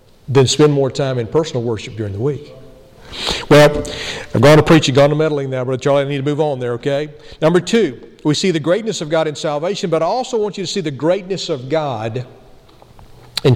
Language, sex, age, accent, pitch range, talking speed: English, male, 50-69, American, 145-200 Hz, 220 wpm